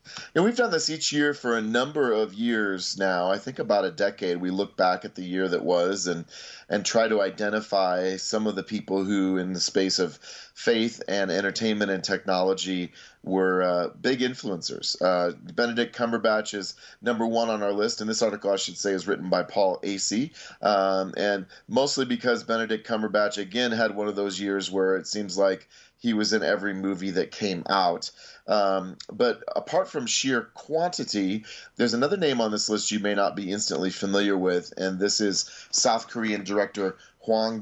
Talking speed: 190 wpm